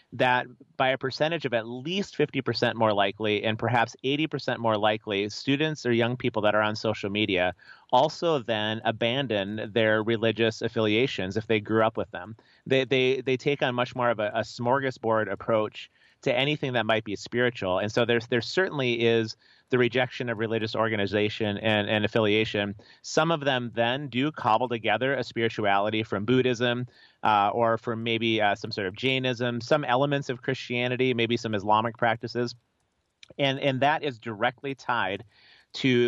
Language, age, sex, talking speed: English, 30-49, male, 170 wpm